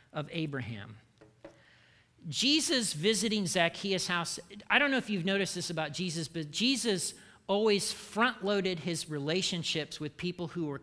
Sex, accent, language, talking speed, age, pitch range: male, American, English, 140 wpm, 40-59, 150-205 Hz